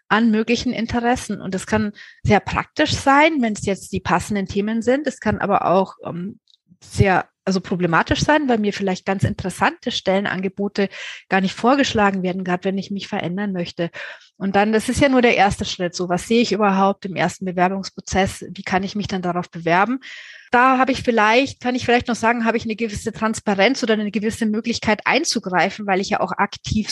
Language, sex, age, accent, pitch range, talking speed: German, female, 30-49, German, 185-235 Hz, 195 wpm